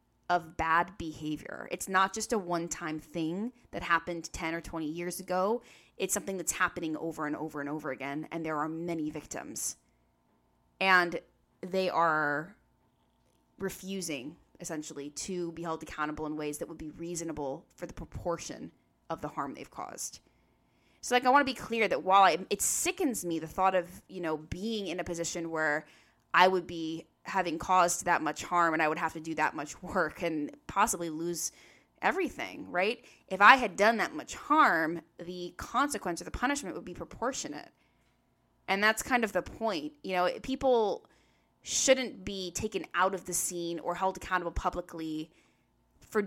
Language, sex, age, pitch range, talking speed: English, female, 20-39, 160-195 Hz, 175 wpm